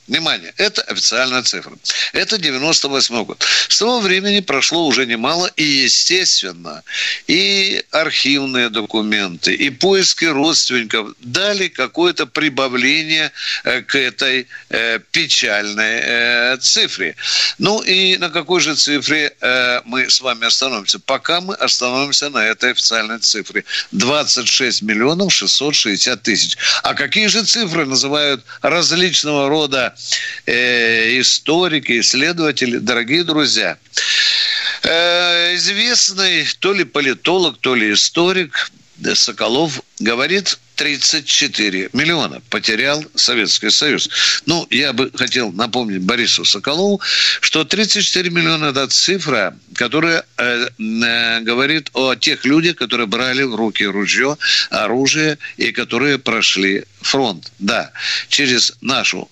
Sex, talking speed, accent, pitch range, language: male, 105 wpm, native, 120-175 Hz, Russian